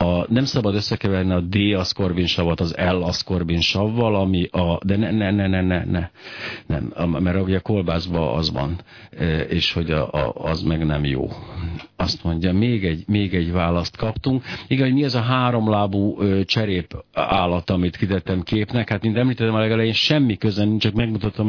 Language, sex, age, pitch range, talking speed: Hungarian, male, 60-79, 85-115 Hz, 155 wpm